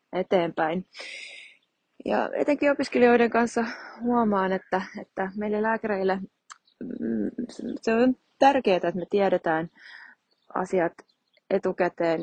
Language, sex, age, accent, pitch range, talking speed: Finnish, female, 20-39, native, 170-210 Hz, 90 wpm